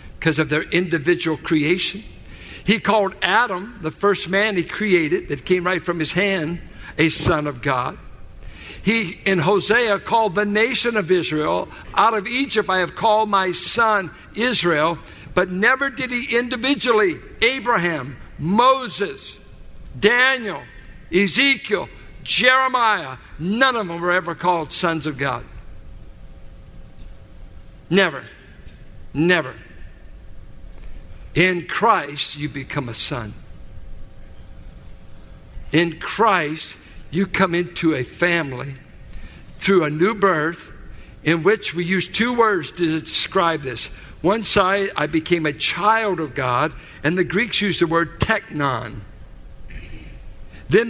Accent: American